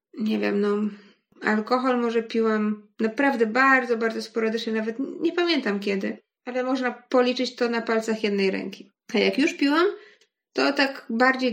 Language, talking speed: Polish, 155 wpm